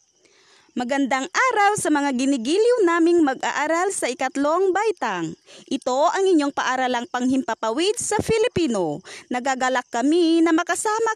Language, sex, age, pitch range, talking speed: Filipino, female, 20-39, 245-360 Hz, 115 wpm